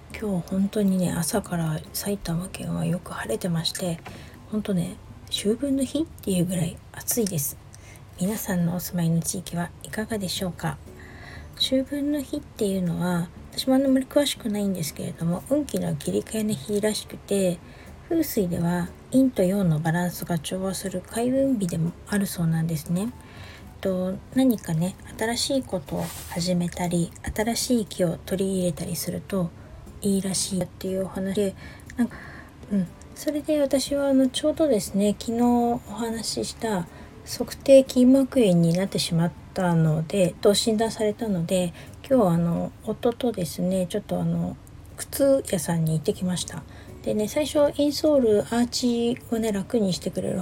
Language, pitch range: Japanese, 175-230 Hz